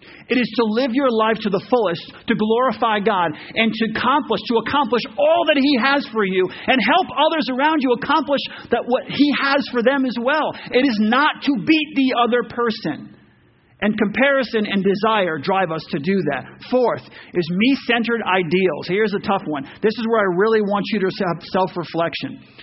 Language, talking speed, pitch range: English, 190 wpm, 190-245 Hz